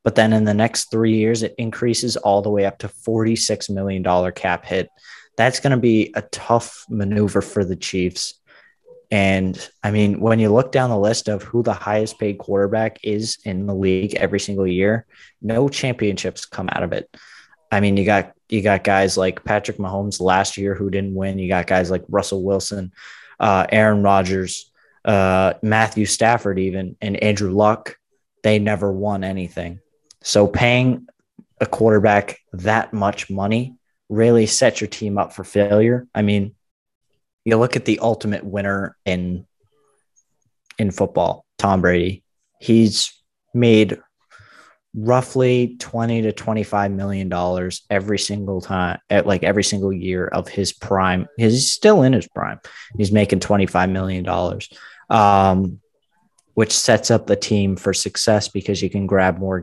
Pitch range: 95-110 Hz